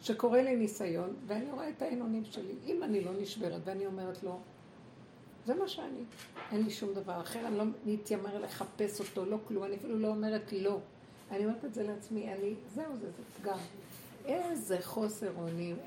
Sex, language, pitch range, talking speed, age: female, Hebrew, 185-240 Hz, 180 wpm, 60-79